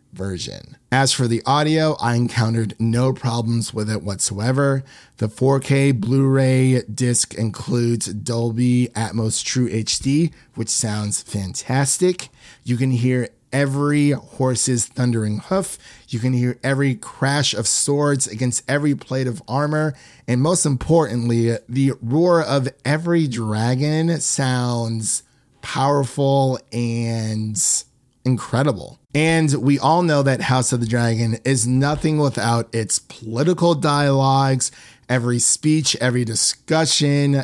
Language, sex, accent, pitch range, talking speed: English, male, American, 120-140 Hz, 120 wpm